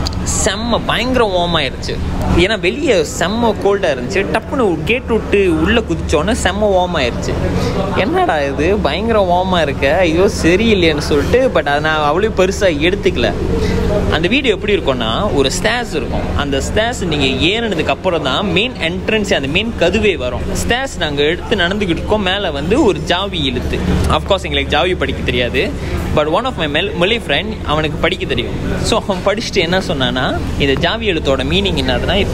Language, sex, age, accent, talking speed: Tamil, male, 20-39, native, 160 wpm